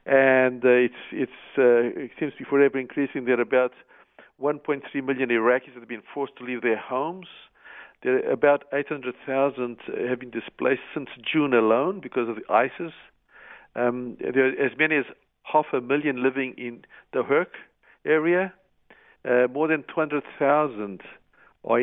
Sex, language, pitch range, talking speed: male, English, 120-140 Hz, 160 wpm